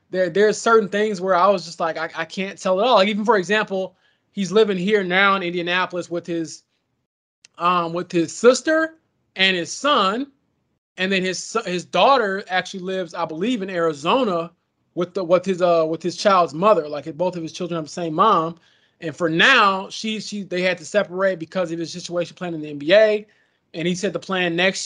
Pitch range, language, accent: 170-200 Hz, English, American